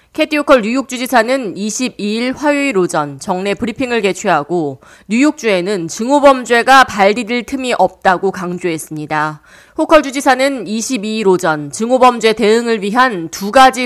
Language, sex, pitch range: Korean, female, 180-260 Hz